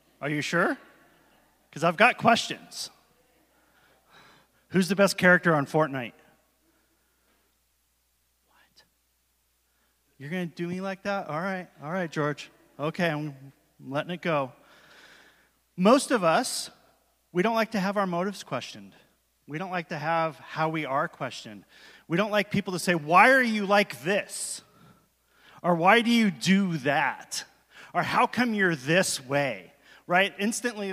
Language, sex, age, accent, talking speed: English, male, 30-49, American, 145 wpm